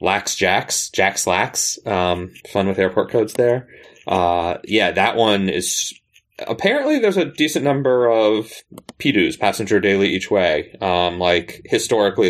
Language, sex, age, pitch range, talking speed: English, male, 30-49, 85-100 Hz, 140 wpm